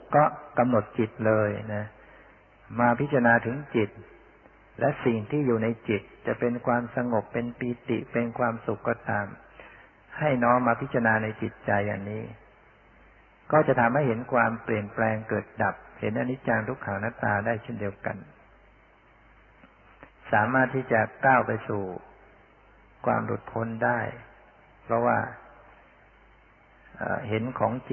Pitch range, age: 110-125 Hz, 60-79